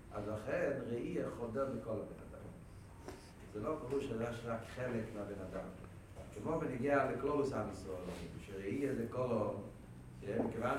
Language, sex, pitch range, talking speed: Hebrew, male, 105-145 Hz, 135 wpm